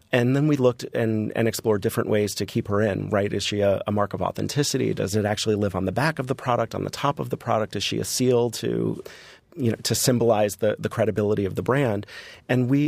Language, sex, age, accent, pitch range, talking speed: English, male, 30-49, American, 100-120 Hz, 250 wpm